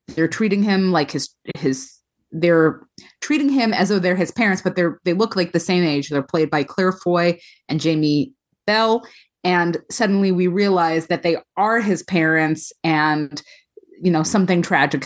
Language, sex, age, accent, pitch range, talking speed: English, female, 30-49, American, 150-185 Hz, 175 wpm